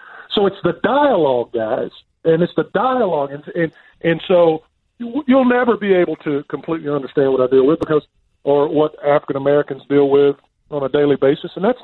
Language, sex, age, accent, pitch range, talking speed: English, male, 40-59, American, 140-205 Hz, 190 wpm